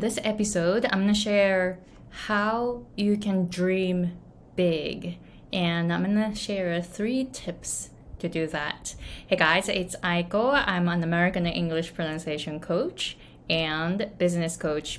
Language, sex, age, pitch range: Japanese, female, 20-39, 170-205 Hz